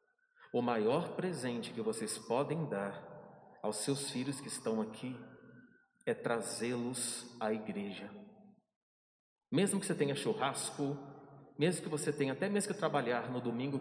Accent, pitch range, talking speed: Brazilian, 120-175 Hz, 140 wpm